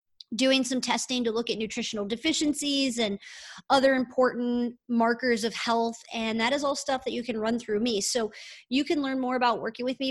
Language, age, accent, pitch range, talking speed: English, 30-49, American, 225-265 Hz, 200 wpm